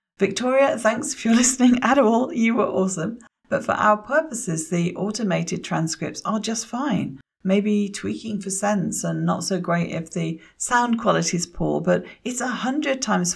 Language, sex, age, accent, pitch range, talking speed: English, female, 40-59, British, 160-205 Hz, 170 wpm